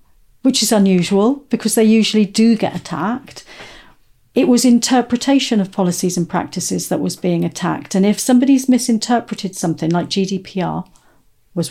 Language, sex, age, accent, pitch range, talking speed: English, female, 50-69, British, 175-215 Hz, 145 wpm